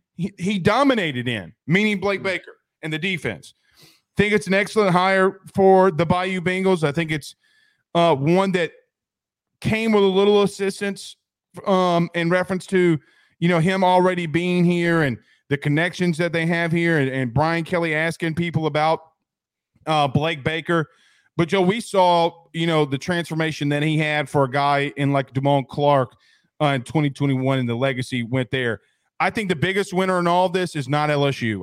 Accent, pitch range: American, 140-180 Hz